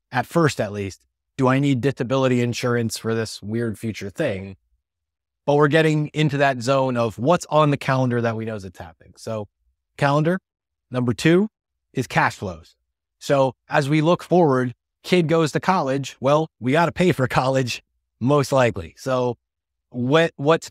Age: 30-49